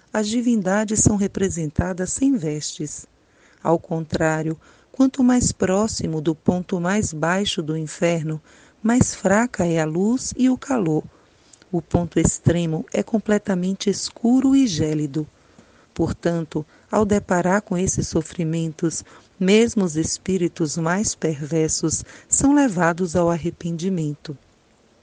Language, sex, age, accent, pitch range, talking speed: Portuguese, female, 40-59, Brazilian, 160-205 Hz, 115 wpm